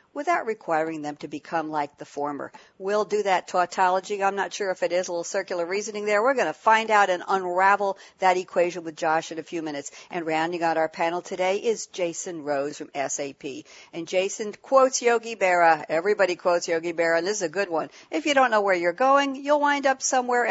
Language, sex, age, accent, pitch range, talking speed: English, female, 60-79, American, 165-220 Hz, 220 wpm